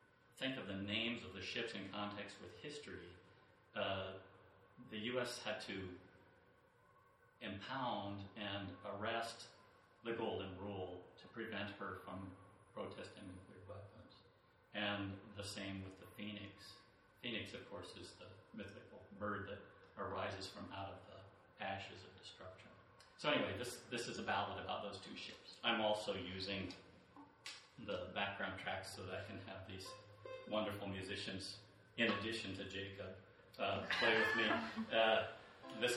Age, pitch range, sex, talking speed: 40-59, 95-110 Hz, male, 145 wpm